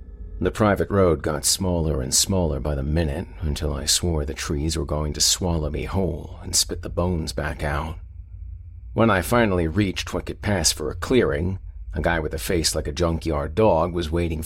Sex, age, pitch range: male, 50-69, 75-90 Hz